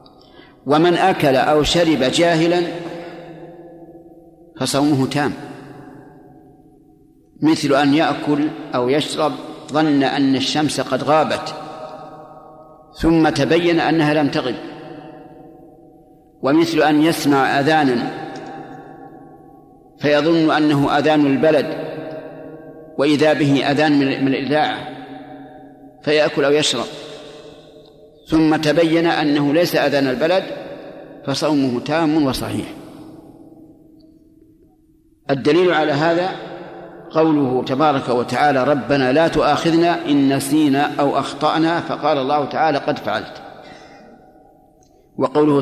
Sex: male